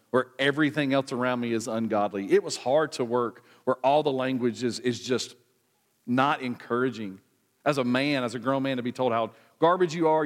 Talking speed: 205 wpm